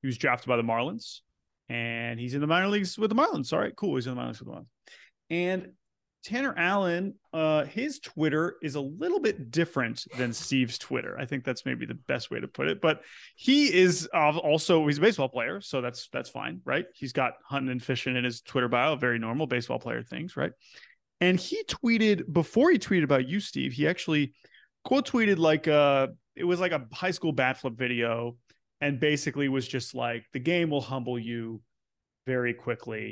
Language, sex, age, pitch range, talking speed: English, male, 30-49, 120-170 Hz, 205 wpm